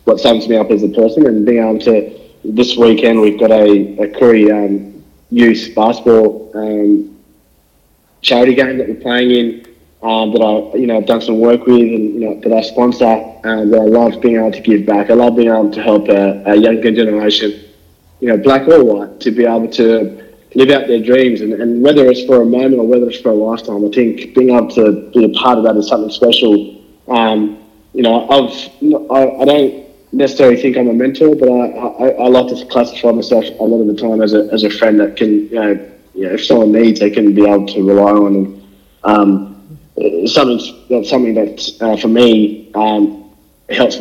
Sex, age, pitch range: male, 20-39, 105-120 Hz